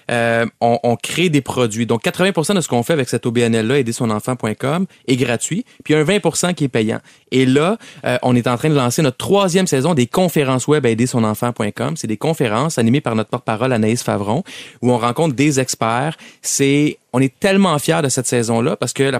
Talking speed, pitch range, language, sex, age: 215 wpm, 115-145 Hz, French, male, 30-49